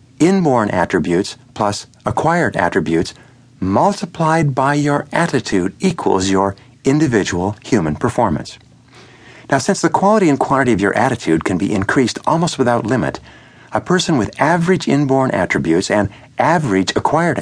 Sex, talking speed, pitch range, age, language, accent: male, 130 wpm, 105-145 Hz, 50-69, English, American